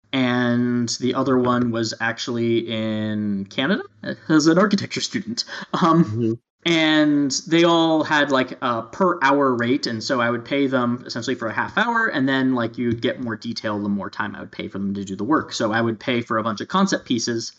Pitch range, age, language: 110-145 Hz, 20-39, English